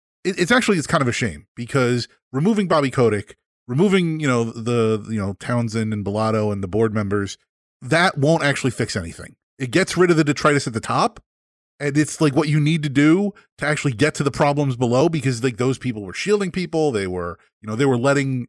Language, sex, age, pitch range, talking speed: English, male, 30-49, 120-160 Hz, 215 wpm